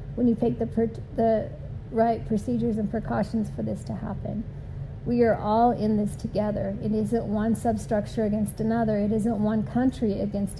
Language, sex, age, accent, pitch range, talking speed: English, female, 50-69, American, 210-235 Hz, 175 wpm